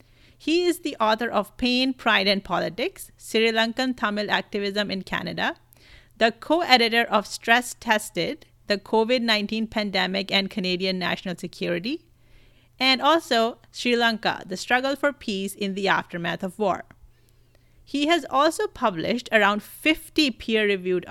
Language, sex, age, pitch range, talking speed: English, female, 30-49, 185-245 Hz, 135 wpm